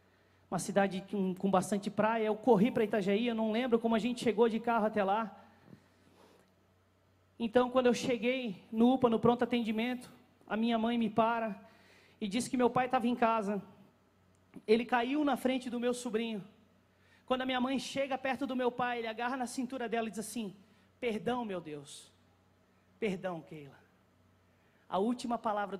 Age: 30-49